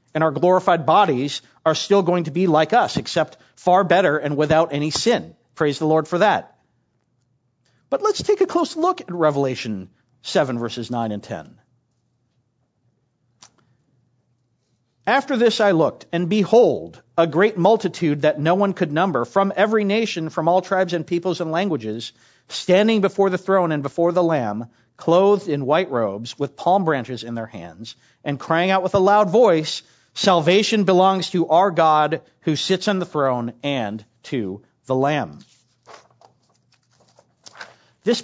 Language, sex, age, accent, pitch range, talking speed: English, male, 50-69, American, 140-200 Hz, 155 wpm